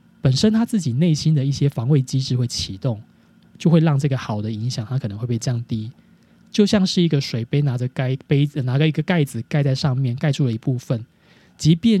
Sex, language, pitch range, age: male, Chinese, 120-155 Hz, 20-39